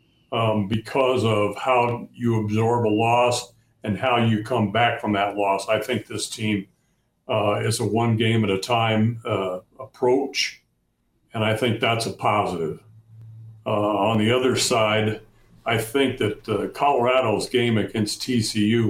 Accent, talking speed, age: American, 145 wpm, 60-79